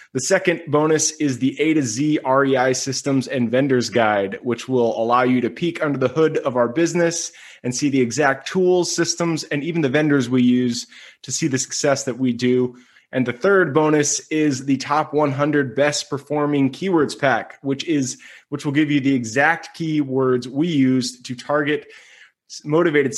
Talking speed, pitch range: 180 wpm, 125-150 Hz